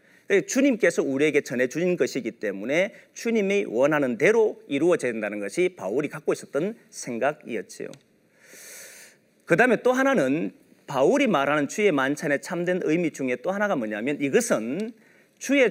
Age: 40-59